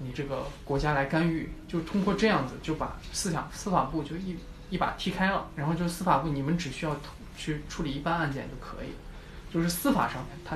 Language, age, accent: Chinese, 20-39, native